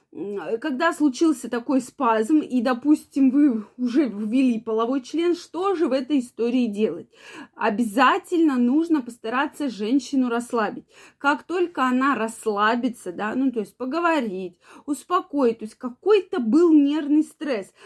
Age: 20-39